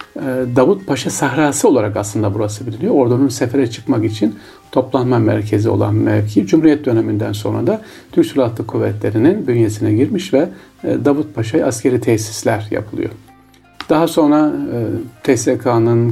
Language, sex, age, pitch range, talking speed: Turkish, male, 40-59, 110-140 Hz, 125 wpm